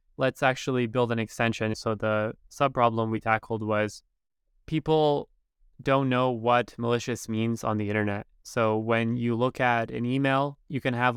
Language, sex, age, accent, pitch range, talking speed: English, male, 20-39, American, 115-130 Hz, 165 wpm